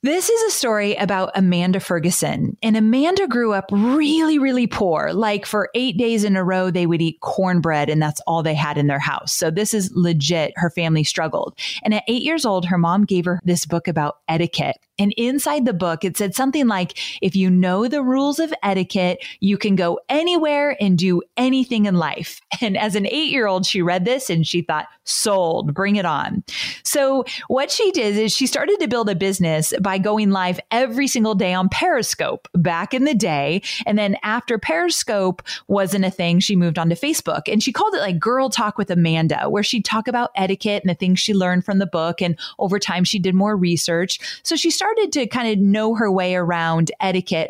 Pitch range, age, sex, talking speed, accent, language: 175-240 Hz, 30-49, female, 210 wpm, American, English